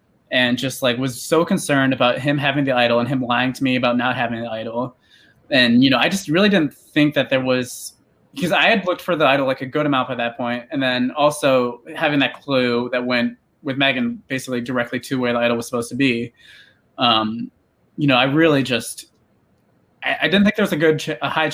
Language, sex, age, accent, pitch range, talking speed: English, male, 20-39, American, 125-155 Hz, 230 wpm